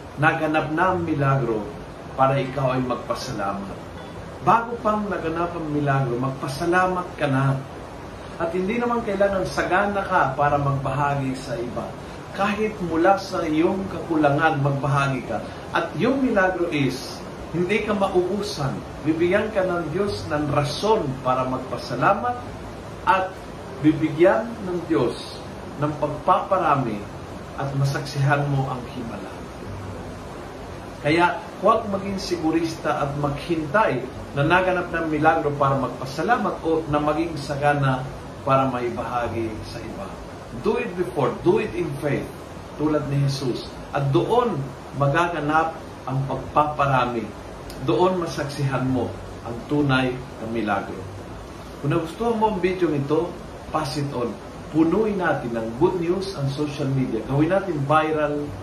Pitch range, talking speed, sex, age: 130-175 Hz, 125 wpm, male, 40-59